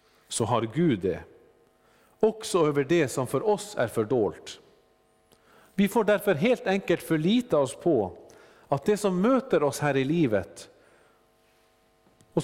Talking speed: 140 wpm